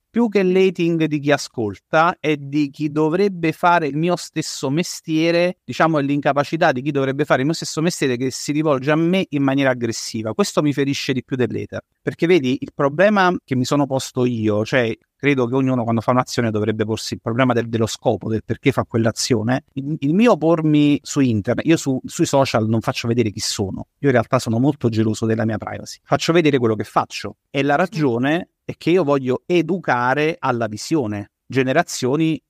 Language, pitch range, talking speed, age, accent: Italian, 120-155 Hz, 200 wpm, 30-49, native